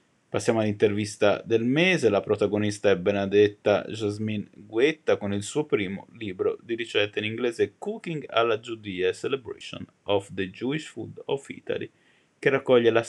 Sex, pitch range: male, 105-125 Hz